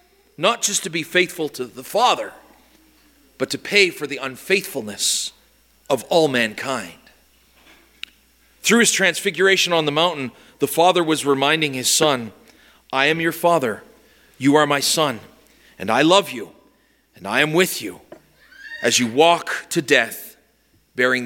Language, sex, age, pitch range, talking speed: English, male, 40-59, 145-210 Hz, 145 wpm